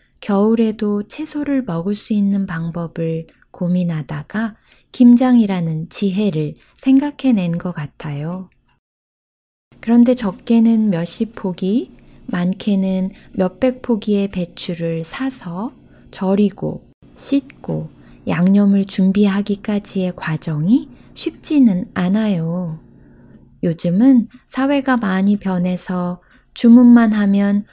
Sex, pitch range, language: female, 180-230 Hz, Korean